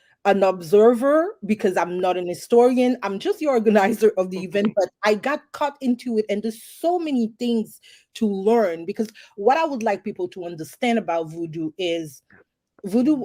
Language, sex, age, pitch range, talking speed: English, female, 30-49, 180-230 Hz, 175 wpm